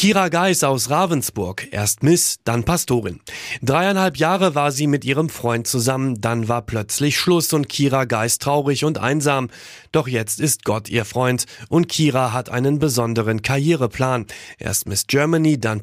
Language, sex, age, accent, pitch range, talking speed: German, male, 30-49, German, 115-150 Hz, 160 wpm